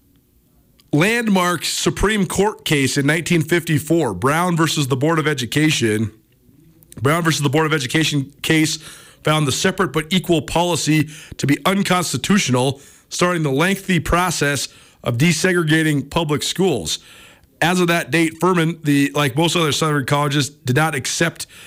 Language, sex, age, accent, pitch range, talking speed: English, male, 40-59, American, 135-175 Hz, 140 wpm